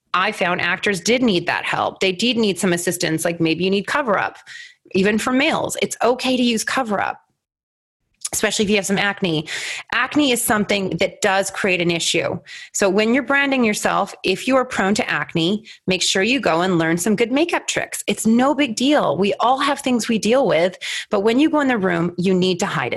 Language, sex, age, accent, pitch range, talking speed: English, female, 30-49, American, 185-250 Hz, 215 wpm